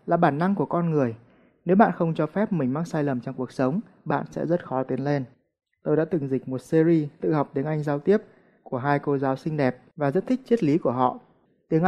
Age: 20-39